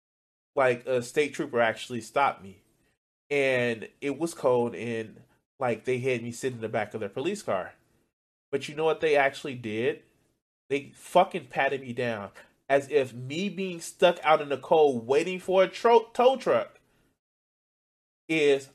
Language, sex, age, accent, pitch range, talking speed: English, male, 20-39, American, 120-155 Hz, 165 wpm